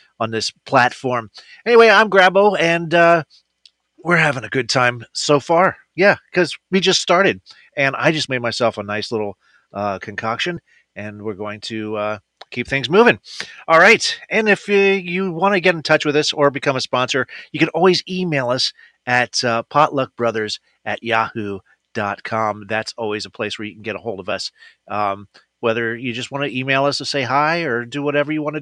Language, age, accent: English, 30-49, American